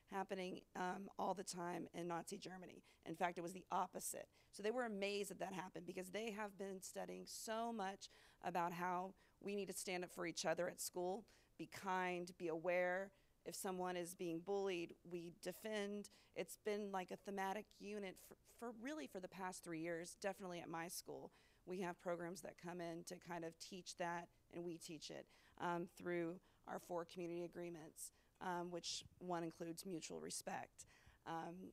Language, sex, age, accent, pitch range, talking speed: English, female, 40-59, American, 175-200 Hz, 180 wpm